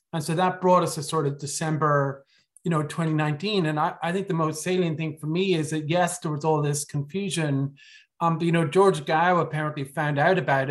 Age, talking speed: 30-49, 225 wpm